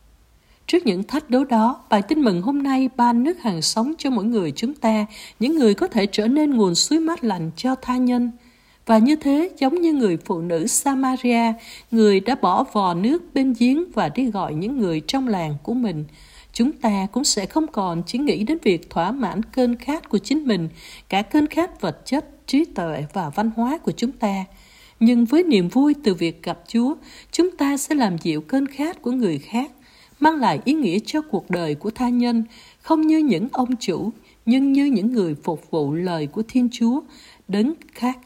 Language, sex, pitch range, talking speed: Vietnamese, female, 200-275 Hz, 205 wpm